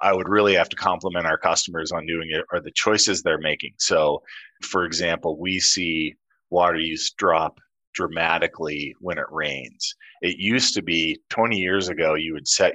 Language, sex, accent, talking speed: English, male, American, 180 wpm